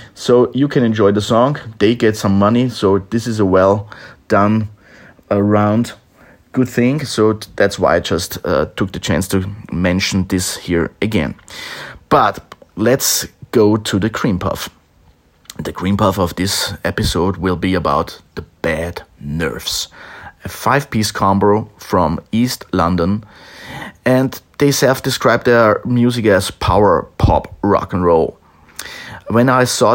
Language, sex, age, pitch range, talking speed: English, male, 30-49, 90-110 Hz, 145 wpm